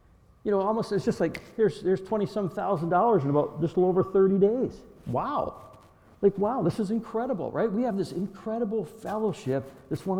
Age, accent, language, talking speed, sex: 60-79, American, English, 190 wpm, male